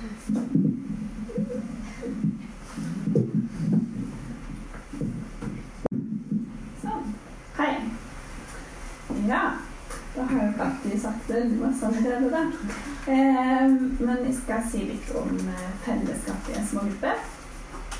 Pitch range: 210-240 Hz